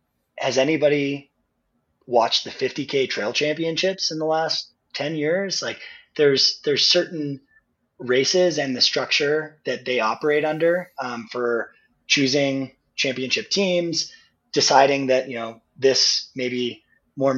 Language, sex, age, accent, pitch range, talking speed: English, male, 20-39, American, 120-150 Hz, 125 wpm